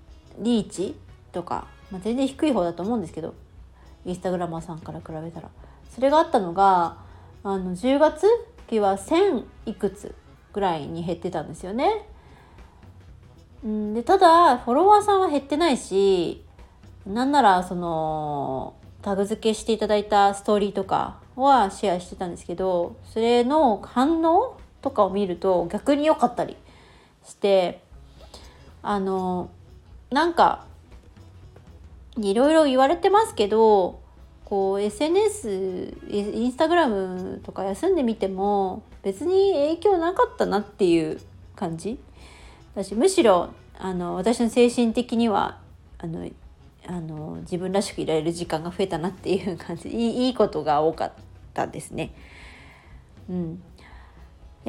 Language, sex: Japanese, female